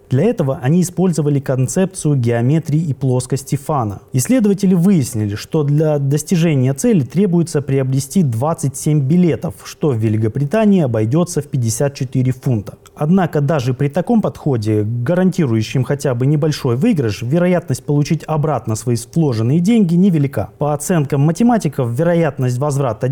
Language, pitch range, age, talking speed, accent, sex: Russian, 130-170 Hz, 20-39, 125 wpm, native, male